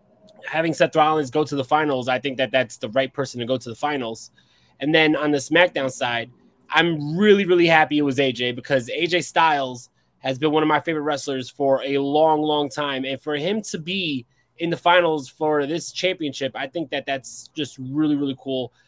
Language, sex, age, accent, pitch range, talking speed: English, male, 20-39, American, 140-175 Hz, 210 wpm